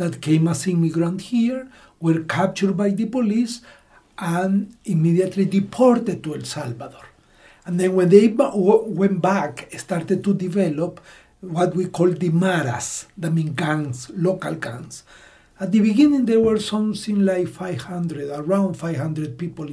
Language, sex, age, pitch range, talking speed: English, male, 60-79, 165-210 Hz, 145 wpm